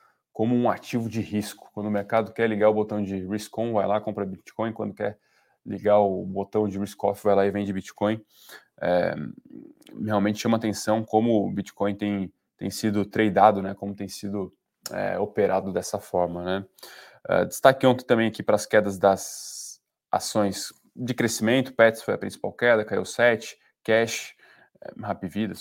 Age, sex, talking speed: 20-39, male, 175 wpm